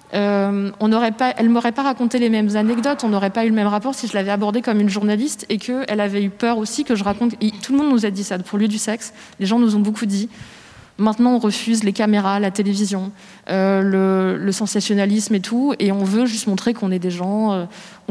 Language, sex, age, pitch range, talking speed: French, female, 20-39, 195-230 Hz, 240 wpm